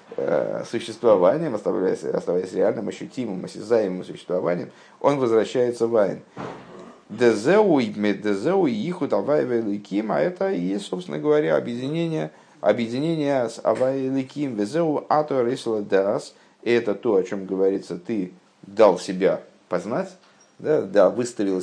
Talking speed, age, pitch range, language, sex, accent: 125 wpm, 50-69, 100-140 Hz, Russian, male, native